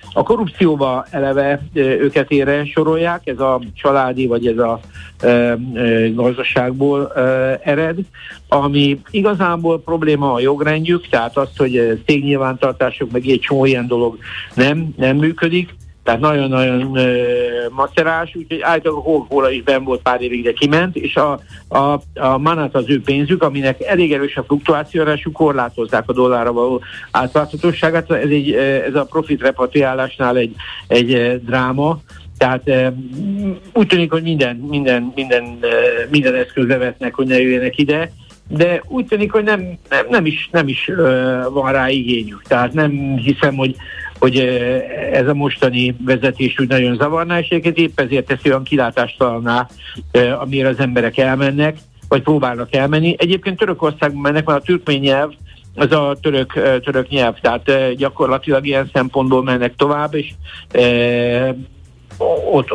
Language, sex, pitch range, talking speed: Hungarian, male, 125-155 Hz, 145 wpm